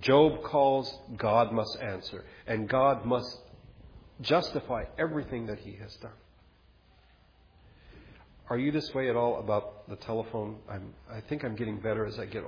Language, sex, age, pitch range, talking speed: English, male, 50-69, 110-155 Hz, 155 wpm